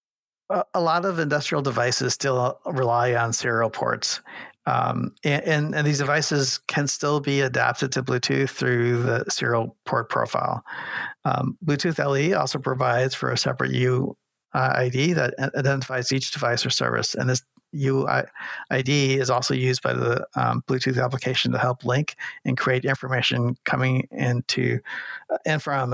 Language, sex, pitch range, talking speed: English, male, 125-145 Hz, 155 wpm